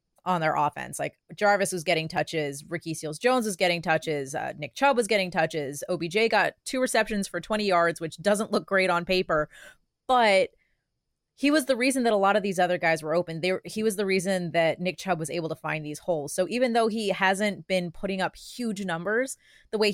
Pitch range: 165-205 Hz